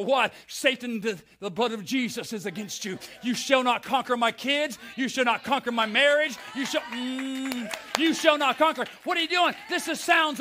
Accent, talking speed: American, 210 wpm